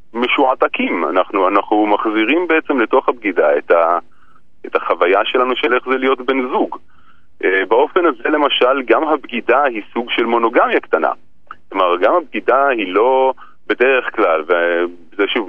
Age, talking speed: 40-59, 145 wpm